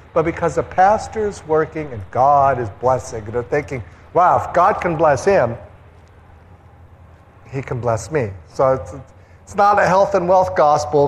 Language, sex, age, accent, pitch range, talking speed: English, male, 50-69, American, 100-140 Hz, 170 wpm